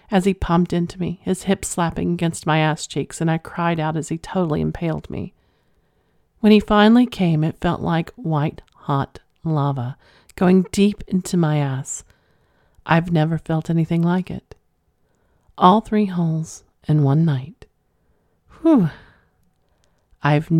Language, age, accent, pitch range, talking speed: English, 40-59, American, 145-175 Hz, 145 wpm